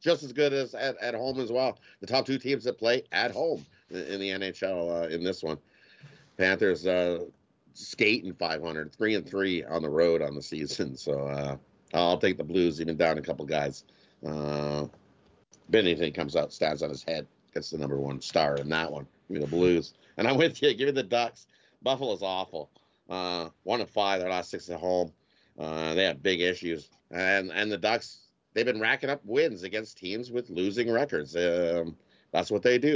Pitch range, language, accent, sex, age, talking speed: 80-110 Hz, English, American, male, 50-69, 205 wpm